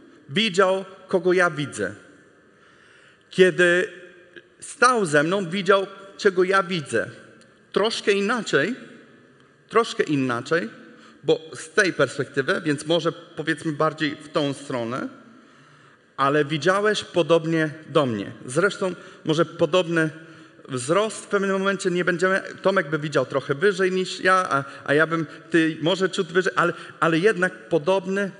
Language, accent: Polish, native